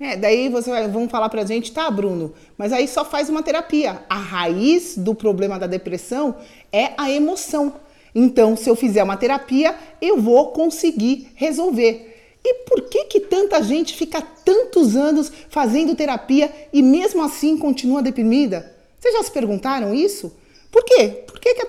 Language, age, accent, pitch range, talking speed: Portuguese, 40-59, Brazilian, 210-295 Hz, 165 wpm